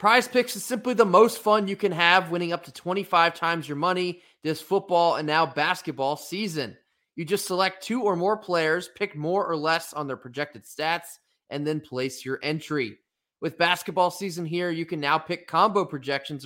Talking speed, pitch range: 195 wpm, 150-190 Hz